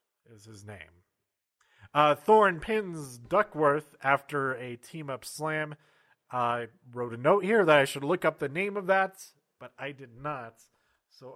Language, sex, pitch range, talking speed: English, male, 130-170 Hz, 165 wpm